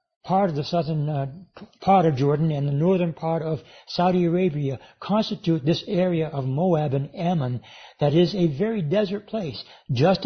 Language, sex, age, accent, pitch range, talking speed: English, male, 60-79, American, 145-185 Hz, 170 wpm